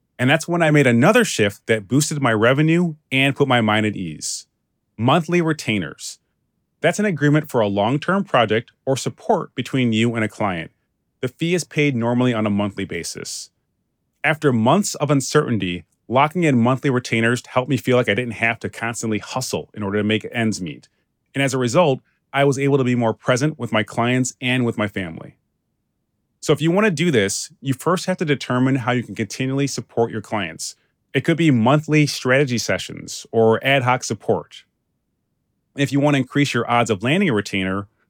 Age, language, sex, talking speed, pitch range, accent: 30-49, English, male, 195 wpm, 110-145 Hz, American